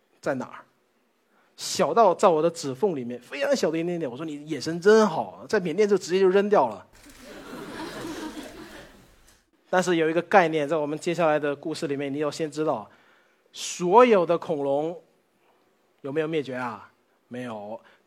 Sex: male